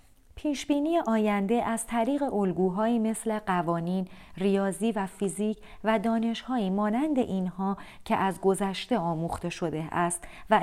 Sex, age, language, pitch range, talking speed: female, 30-49, Persian, 185-230 Hz, 120 wpm